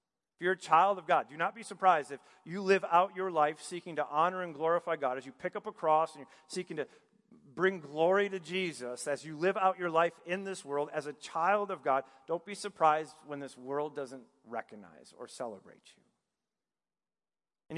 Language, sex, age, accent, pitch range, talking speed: English, male, 40-59, American, 155-195 Hz, 210 wpm